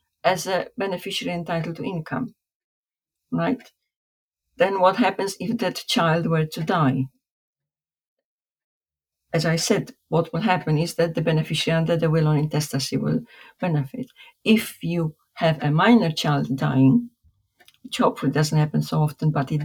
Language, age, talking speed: English, 50-69, 145 wpm